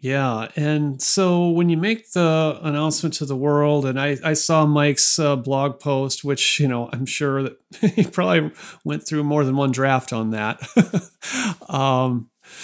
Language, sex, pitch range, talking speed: English, male, 140-200 Hz, 170 wpm